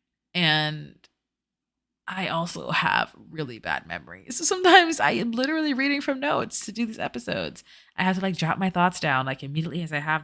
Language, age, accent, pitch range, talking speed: English, 20-39, American, 150-195 Hz, 190 wpm